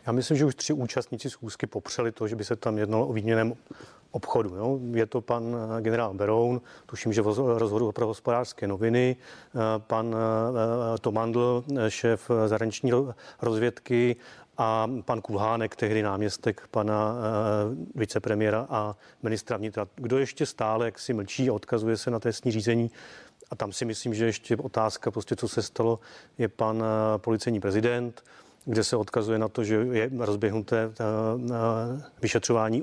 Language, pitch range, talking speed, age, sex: Czech, 110-120 Hz, 150 wpm, 30-49, male